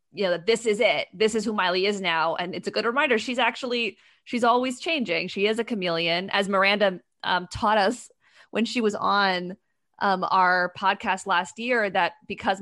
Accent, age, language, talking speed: American, 20-39, English, 200 wpm